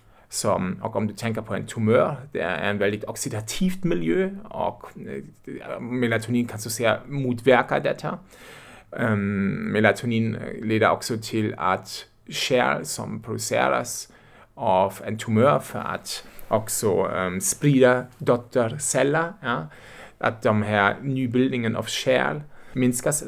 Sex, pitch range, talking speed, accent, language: male, 110-135 Hz, 130 wpm, German, Swedish